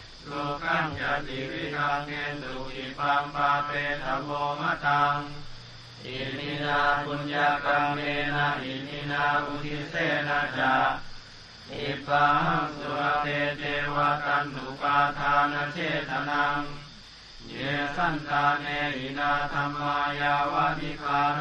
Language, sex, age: Thai, male, 30-49